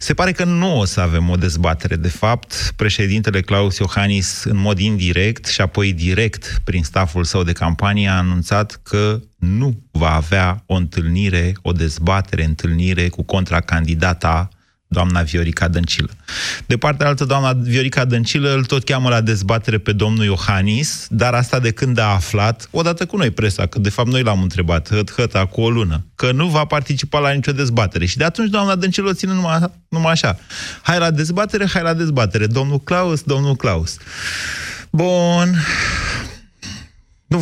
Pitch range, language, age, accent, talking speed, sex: 90-135 Hz, Romanian, 30-49, native, 165 wpm, male